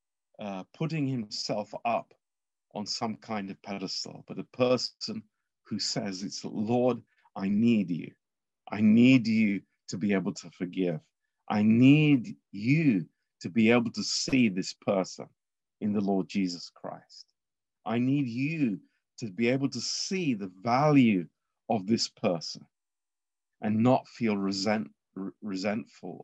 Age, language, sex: 50-69, Romanian, male